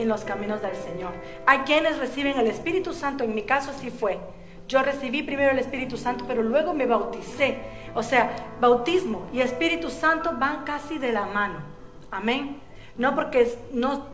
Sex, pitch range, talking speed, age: female, 220-285 Hz, 175 wpm, 40-59